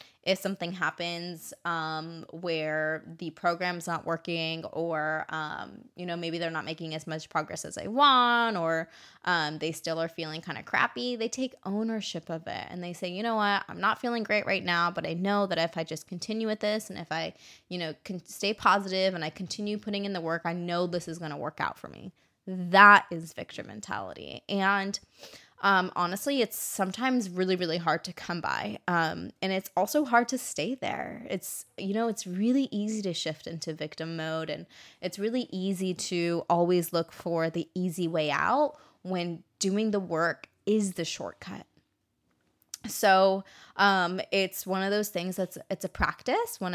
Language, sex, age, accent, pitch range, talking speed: English, female, 20-39, American, 170-205 Hz, 190 wpm